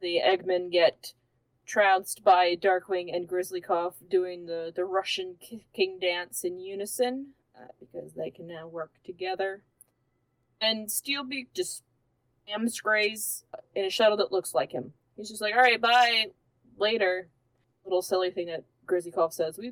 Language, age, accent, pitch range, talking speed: English, 20-39, American, 175-255 Hz, 145 wpm